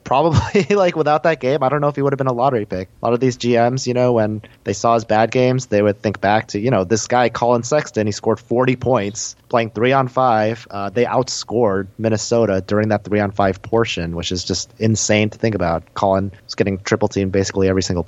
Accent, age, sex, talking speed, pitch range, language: American, 30-49, male, 220 wpm, 100-120 Hz, English